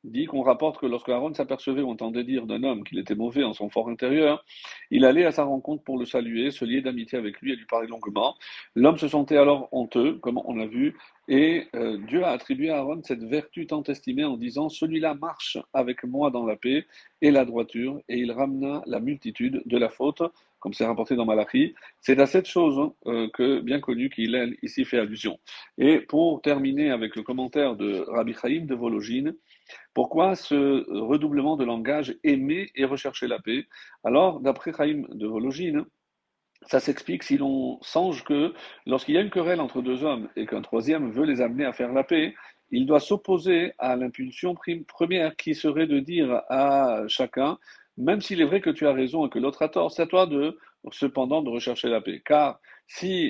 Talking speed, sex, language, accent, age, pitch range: 205 wpm, male, French, French, 40-59, 125-180 Hz